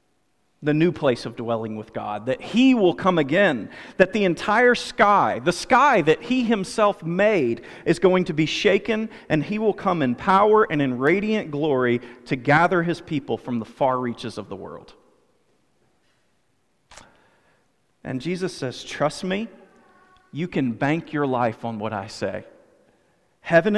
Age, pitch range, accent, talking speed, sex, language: 40-59, 140-195 Hz, American, 160 wpm, male, English